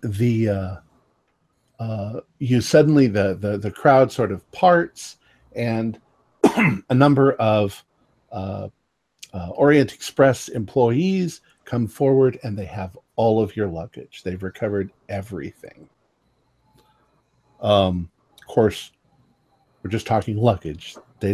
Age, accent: 50-69, American